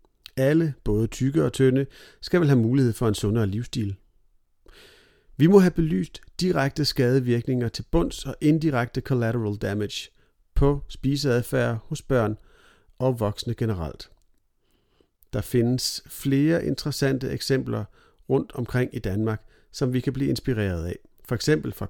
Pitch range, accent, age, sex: 110-140 Hz, native, 40-59, male